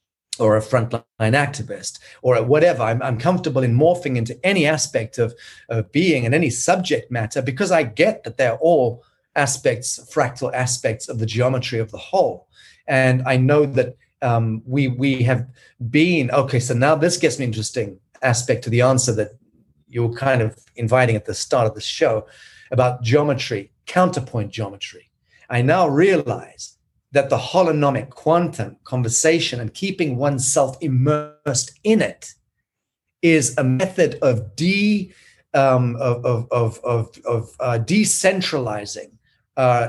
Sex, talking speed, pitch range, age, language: male, 145 wpm, 120-155 Hz, 30-49, English